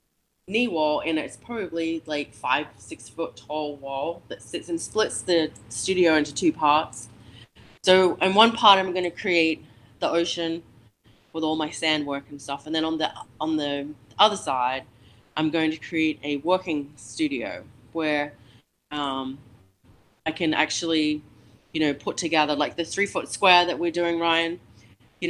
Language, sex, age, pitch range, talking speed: English, female, 20-39, 140-175 Hz, 170 wpm